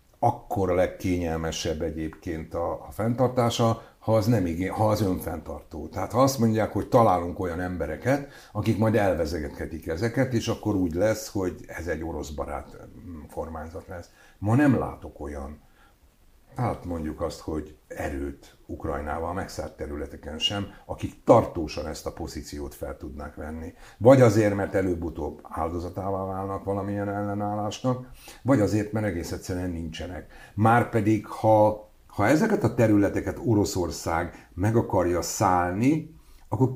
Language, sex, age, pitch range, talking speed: Hungarian, male, 60-79, 80-105 Hz, 130 wpm